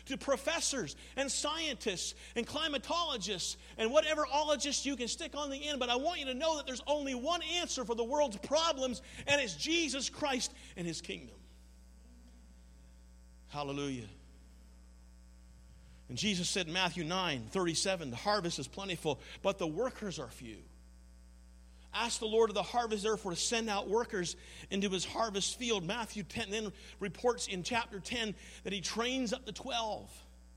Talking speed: 160 wpm